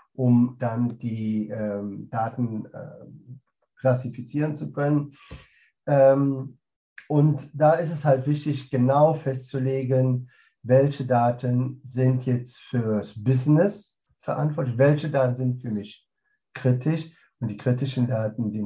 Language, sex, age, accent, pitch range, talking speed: German, male, 50-69, German, 125-160 Hz, 115 wpm